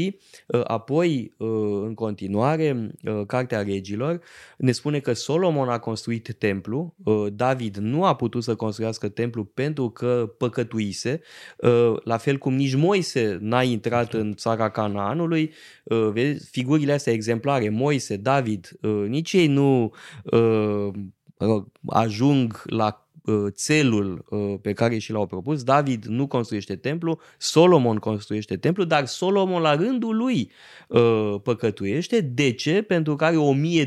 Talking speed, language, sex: 120 wpm, Romanian, male